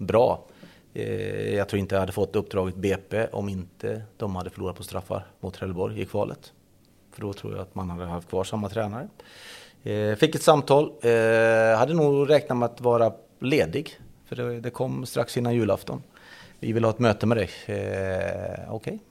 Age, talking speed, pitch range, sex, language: 30-49, 175 wpm, 95-120 Hz, male, Swedish